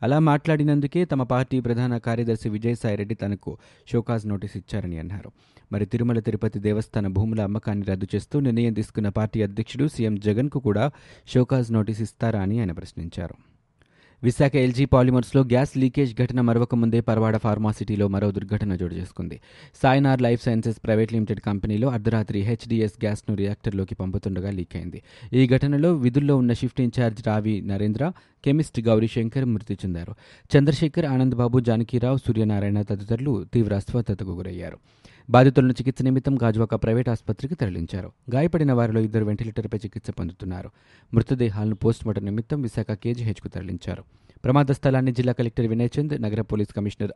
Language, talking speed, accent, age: Telugu, 140 wpm, native, 30-49